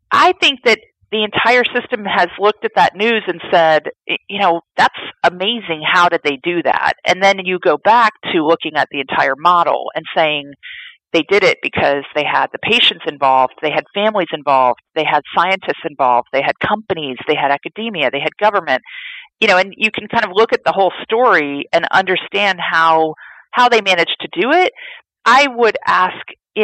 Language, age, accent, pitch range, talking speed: English, 40-59, American, 155-225 Hz, 195 wpm